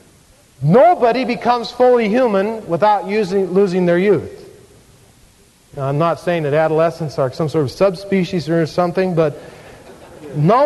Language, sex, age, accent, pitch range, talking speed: English, male, 50-69, American, 140-220 Hz, 135 wpm